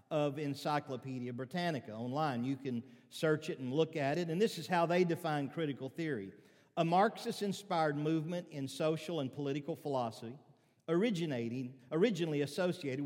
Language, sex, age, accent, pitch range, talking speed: English, male, 50-69, American, 135-175 Hz, 145 wpm